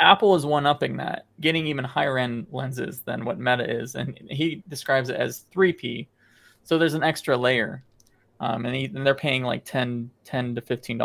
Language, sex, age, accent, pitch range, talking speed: English, male, 20-39, American, 120-150 Hz, 190 wpm